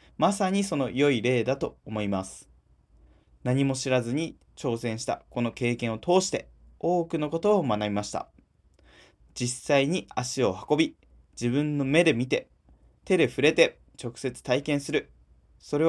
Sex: male